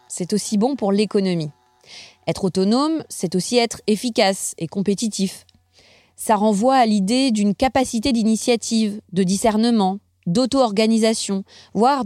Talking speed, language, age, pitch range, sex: 120 wpm, French, 30-49, 190-245 Hz, female